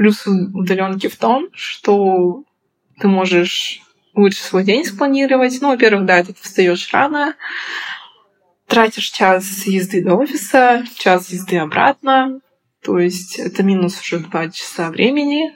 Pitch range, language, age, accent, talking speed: 180-210 Hz, Russian, 20-39, native, 125 wpm